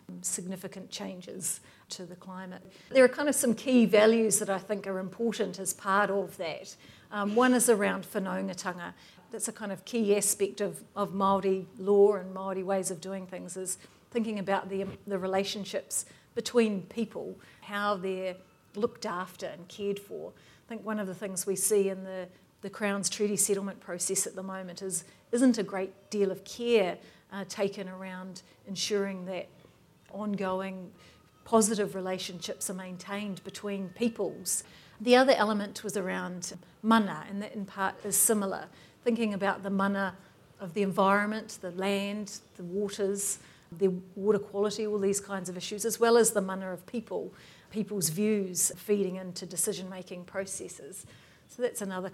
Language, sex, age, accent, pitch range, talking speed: English, female, 50-69, Australian, 190-210 Hz, 160 wpm